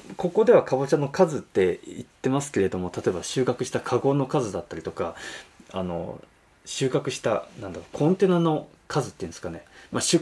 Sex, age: male, 20-39